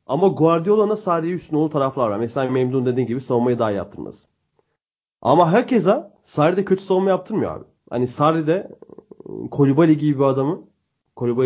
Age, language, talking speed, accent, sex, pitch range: 30-49, Turkish, 135 wpm, native, male, 130-175 Hz